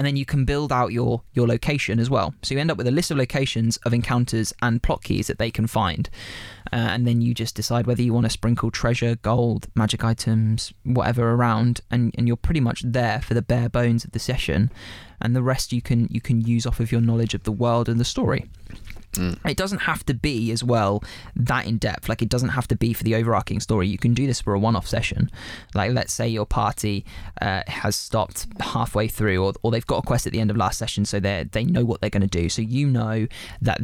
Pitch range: 100-120 Hz